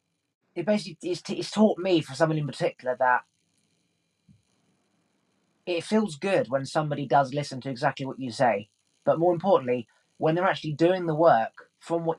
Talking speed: 160 wpm